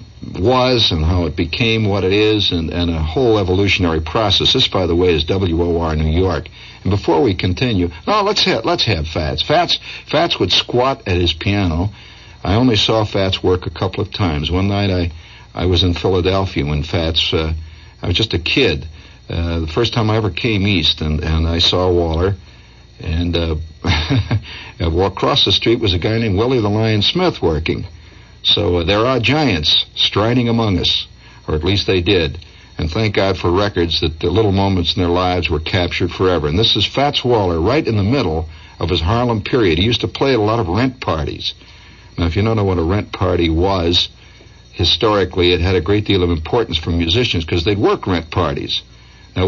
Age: 60-79